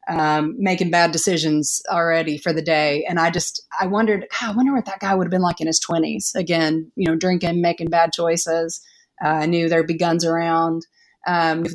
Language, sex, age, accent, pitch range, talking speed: English, female, 30-49, American, 165-195 Hz, 205 wpm